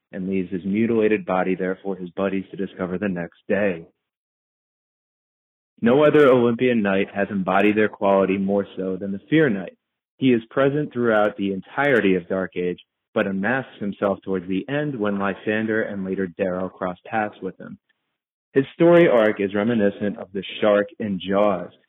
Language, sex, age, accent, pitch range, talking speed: English, male, 30-49, American, 95-115 Hz, 170 wpm